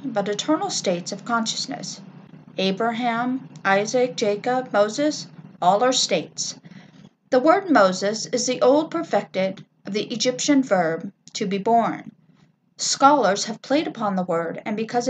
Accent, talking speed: American, 135 wpm